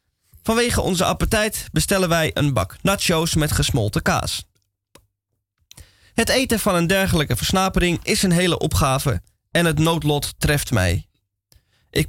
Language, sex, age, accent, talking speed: Dutch, male, 20-39, Dutch, 135 wpm